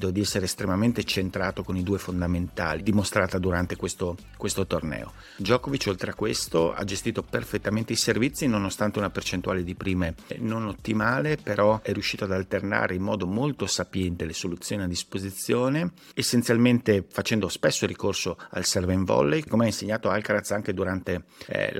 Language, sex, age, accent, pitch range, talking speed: Italian, male, 50-69, native, 90-105 Hz, 155 wpm